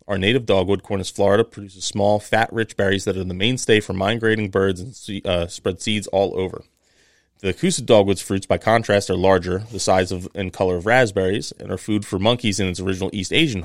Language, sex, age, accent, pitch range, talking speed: English, male, 30-49, American, 95-110 Hz, 205 wpm